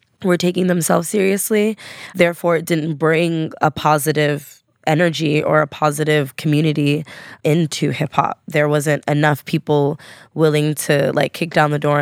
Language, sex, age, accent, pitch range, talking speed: English, female, 10-29, American, 150-170 Hz, 145 wpm